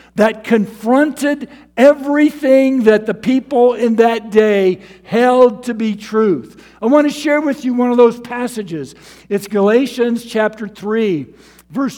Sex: male